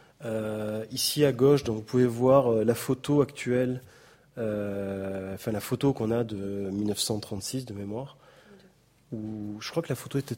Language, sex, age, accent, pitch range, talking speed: French, male, 30-49, French, 105-135 Hz, 160 wpm